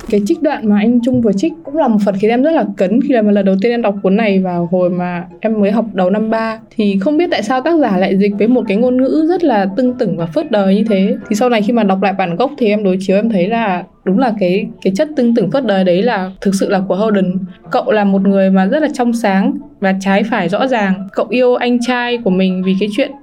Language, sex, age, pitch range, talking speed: Vietnamese, female, 20-39, 195-245 Hz, 290 wpm